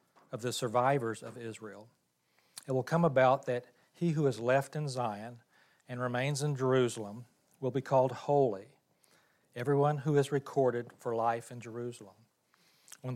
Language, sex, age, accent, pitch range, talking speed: English, male, 40-59, American, 115-130 Hz, 150 wpm